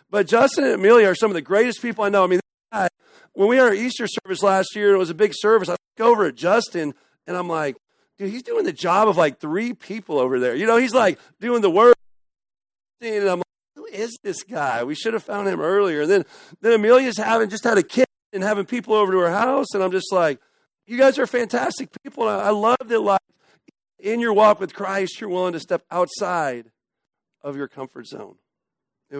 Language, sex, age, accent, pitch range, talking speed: English, male, 40-59, American, 165-235 Hz, 235 wpm